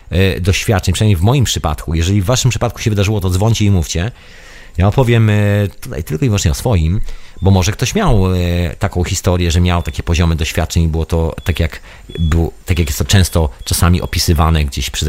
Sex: male